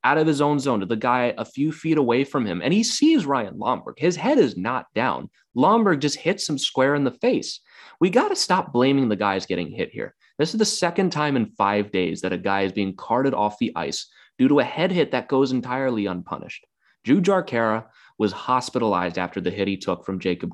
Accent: American